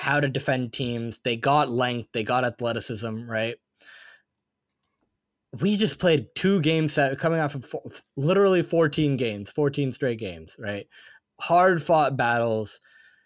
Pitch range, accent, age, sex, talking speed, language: 115-155 Hz, American, 20-39, male, 125 wpm, English